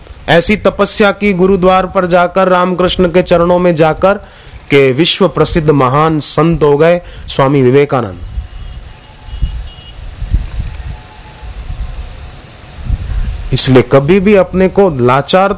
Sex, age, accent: male, 30-49, native